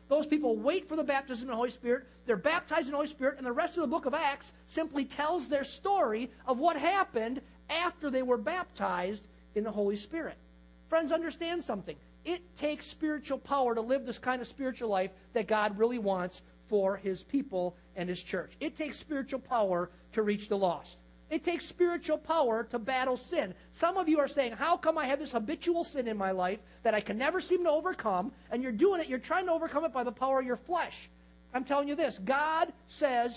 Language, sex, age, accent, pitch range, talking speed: English, male, 50-69, American, 220-315 Hz, 220 wpm